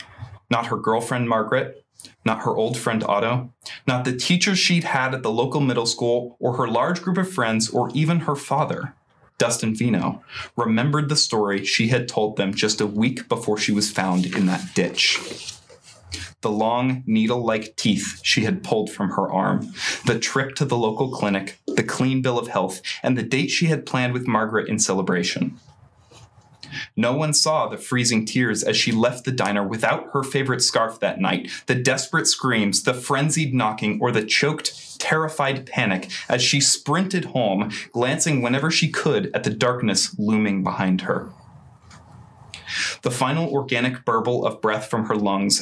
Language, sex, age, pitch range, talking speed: English, male, 20-39, 110-140 Hz, 170 wpm